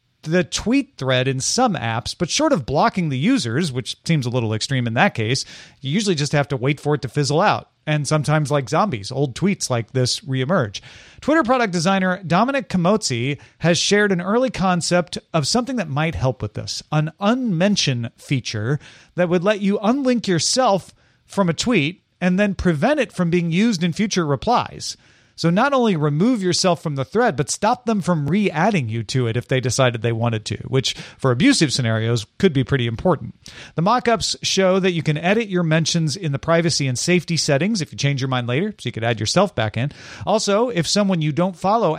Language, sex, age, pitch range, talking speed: English, male, 40-59, 130-190 Hz, 205 wpm